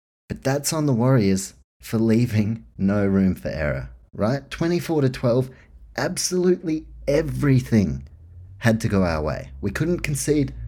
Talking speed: 140 wpm